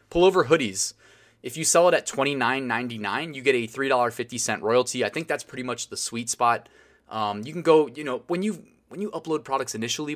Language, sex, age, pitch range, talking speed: English, male, 20-39, 120-155 Hz, 200 wpm